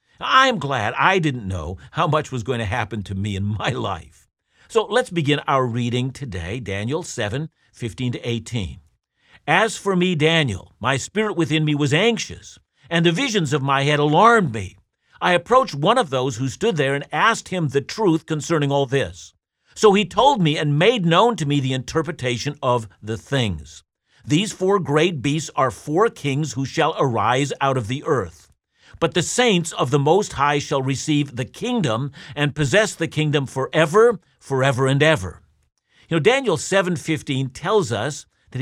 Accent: American